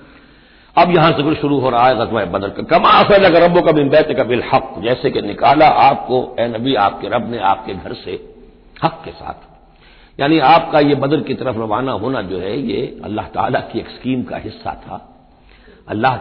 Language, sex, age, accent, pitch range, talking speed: Hindi, male, 60-79, native, 125-170 Hz, 190 wpm